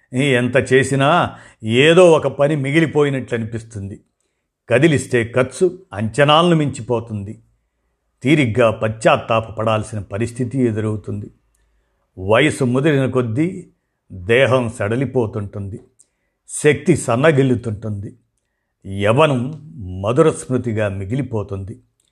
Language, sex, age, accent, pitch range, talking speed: Telugu, male, 50-69, native, 110-140 Hz, 70 wpm